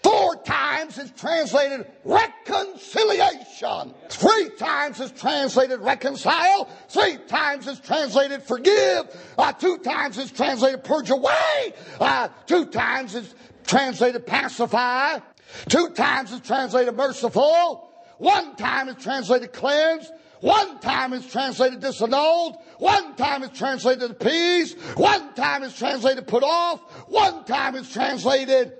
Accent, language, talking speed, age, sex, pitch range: American, English, 115 wpm, 50-69, male, 225-335 Hz